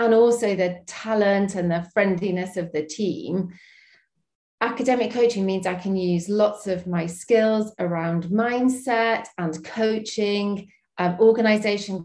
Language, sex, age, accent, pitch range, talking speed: English, female, 40-59, British, 180-220 Hz, 130 wpm